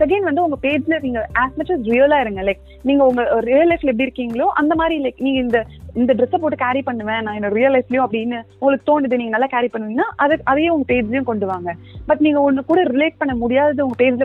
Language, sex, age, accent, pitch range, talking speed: Tamil, female, 30-49, native, 225-295 Hz, 150 wpm